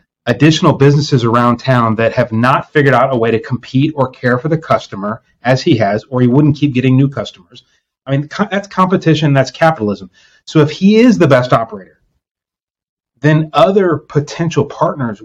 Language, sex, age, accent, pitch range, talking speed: English, male, 30-49, American, 125-155 Hz, 175 wpm